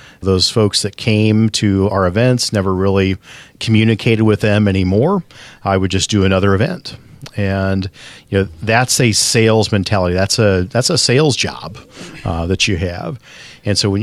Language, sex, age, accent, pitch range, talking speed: English, male, 40-59, American, 95-120 Hz, 165 wpm